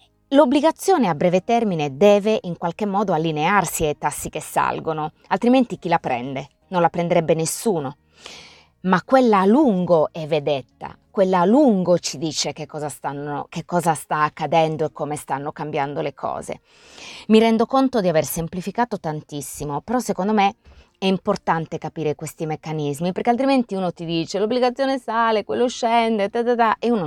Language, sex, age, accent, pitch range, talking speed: Italian, female, 20-39, native, 155-215 Hz, 160 wpm